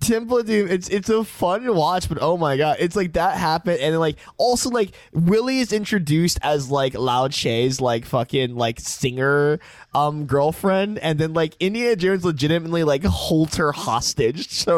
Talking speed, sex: 175 wpm, male